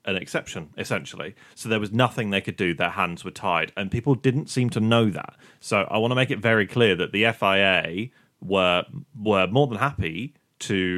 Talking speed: 210 wpm